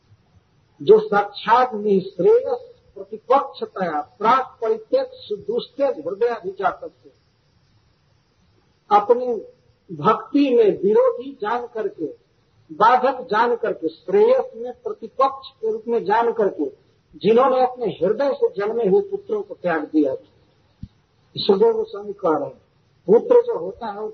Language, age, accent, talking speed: Hindi, 50-69, native, 95 wpm